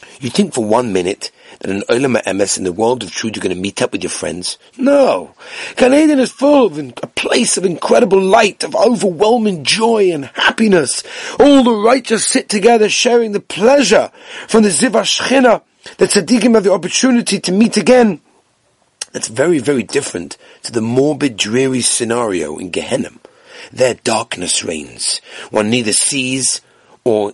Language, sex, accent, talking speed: English, male, British, 160 wpm